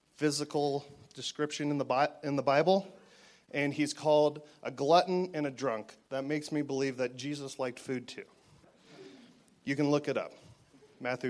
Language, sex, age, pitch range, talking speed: English, male, 30-49, 130-160 Hz, 160 wpm